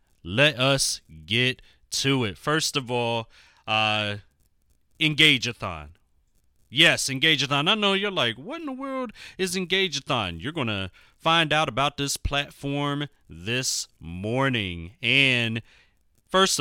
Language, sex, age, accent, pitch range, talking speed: English, male, 30-49, American, 115-175 Hz, 125 wpm